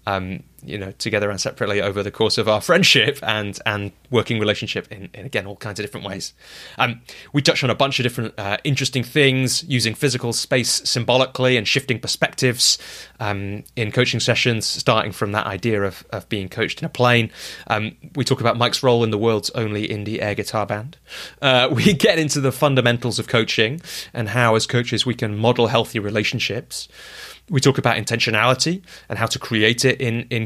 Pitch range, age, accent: 105-130 Hz, 20-39, British